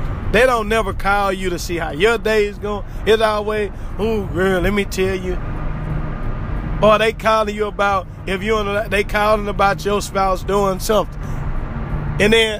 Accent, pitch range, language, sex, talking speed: American, 155-230 Hz, English, male, 175 wpm